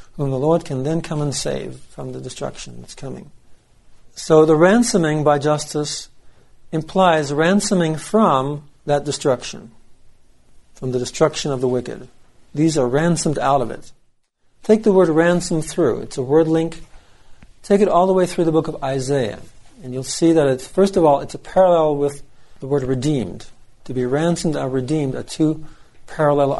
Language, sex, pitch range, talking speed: English, male, 135-170 Hz, 170 wpm